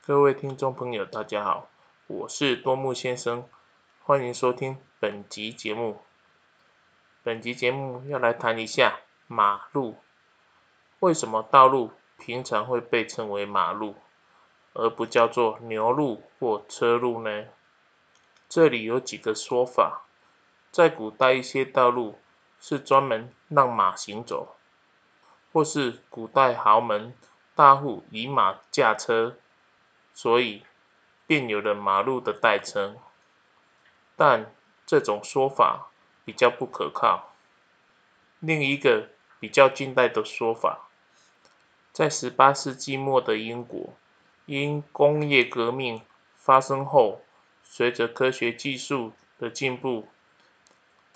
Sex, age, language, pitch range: male, 20-39, Chinese, 115-135 Hz